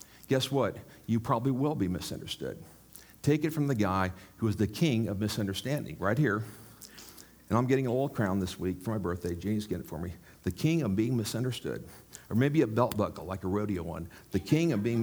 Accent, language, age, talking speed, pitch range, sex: American, English, 50-69, 215 wpm, 105-140 Hz, male